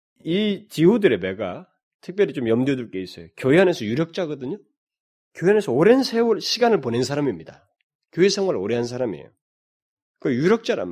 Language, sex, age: Korean, male, 30-49